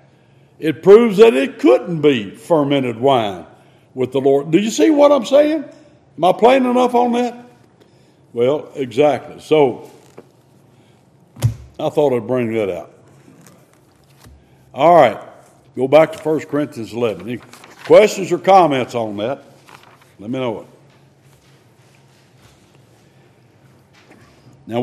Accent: American